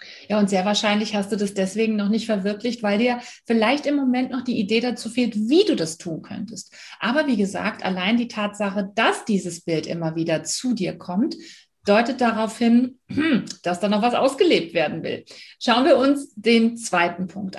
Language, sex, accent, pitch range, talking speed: German, female, German, 205-265 Hz, 190 wpm